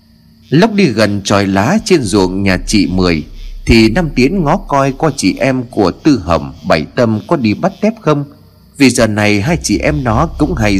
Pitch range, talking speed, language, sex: 90-135 Hz, 205 wpm, Vietnamese, male